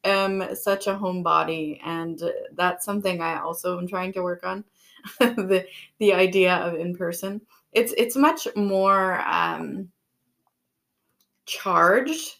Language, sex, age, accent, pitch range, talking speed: English, female, 20-39, American, 175-205 Hz, 125 wpm